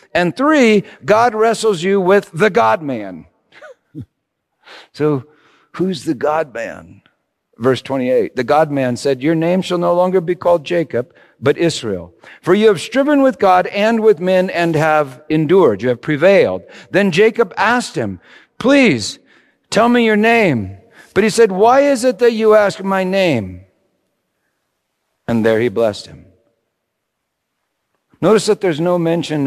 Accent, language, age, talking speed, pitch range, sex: American, English, 50-69, 145 wpm, 145-220 Hz, male